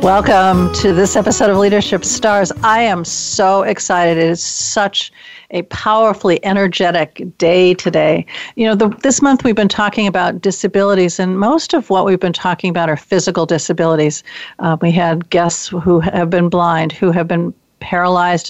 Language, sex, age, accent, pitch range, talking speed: English, female, 50-69, American, 175-220 Hz, 170 wpm